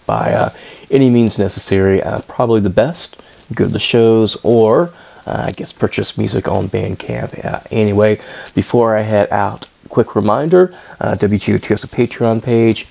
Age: 20-39